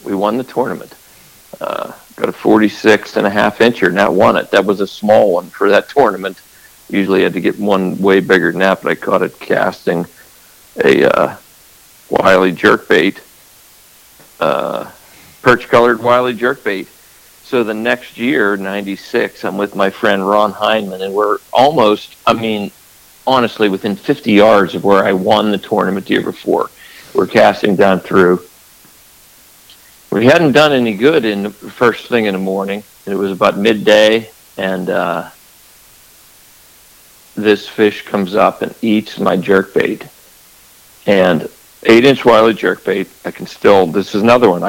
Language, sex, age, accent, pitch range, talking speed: English, male, 60-79, American, 95-110 Hz, 160 wpm